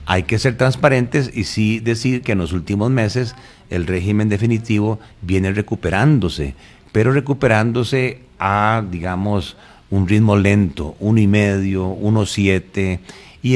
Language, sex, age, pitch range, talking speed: Spanish, male, 50-69, 90-115 Hz, 120 wpm